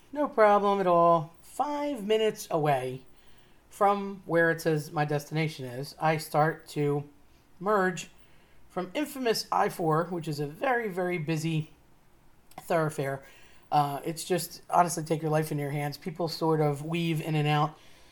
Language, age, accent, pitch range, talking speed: English, 40-59, American, 150-185 Hz, 150 wpm